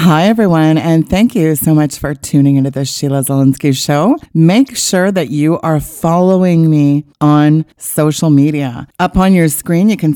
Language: English